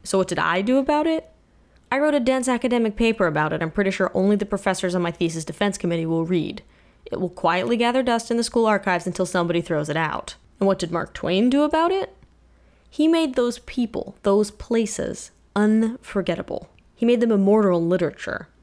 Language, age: English, 10-29